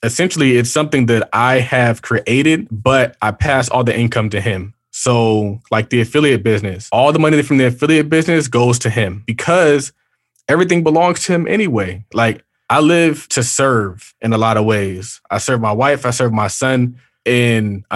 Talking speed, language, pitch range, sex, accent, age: 185 wpm, English, 115-140 Hz, male, American, 20-39